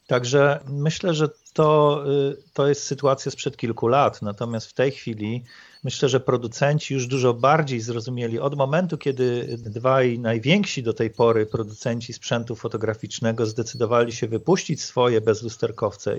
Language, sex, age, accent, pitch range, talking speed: Polish, male, 40-59, native, 115-135 Hz, 135 wpm